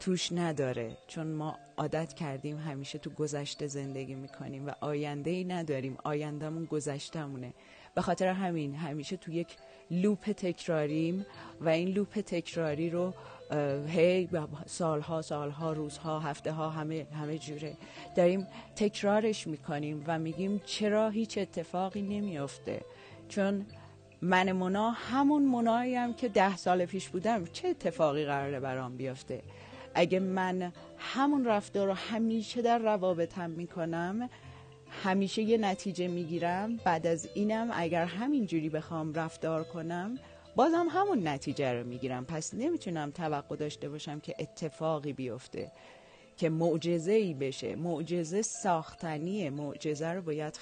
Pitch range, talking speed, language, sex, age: 150-195 Hz, 125 wpm, Persian, female, 40-59